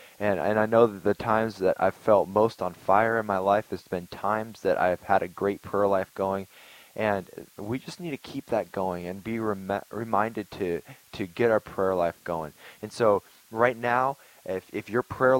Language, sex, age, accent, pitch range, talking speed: English, male, 20-39, American, 95-115 Hz, 210 wpm